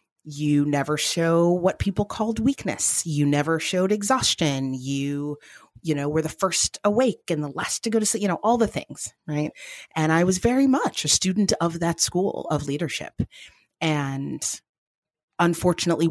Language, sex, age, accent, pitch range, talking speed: English, female, 30-49, American, 140-170 Hz, 170 wpm